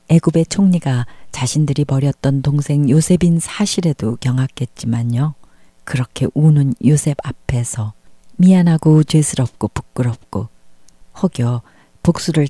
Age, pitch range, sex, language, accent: 40-59, 120-160 Hz, female, Korean, native